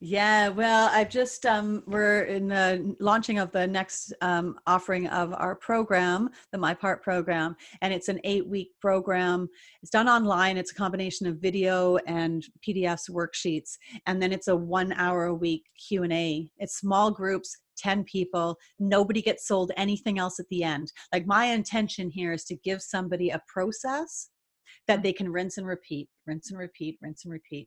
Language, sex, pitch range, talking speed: English, female, 180-230 Hz, 170 wpm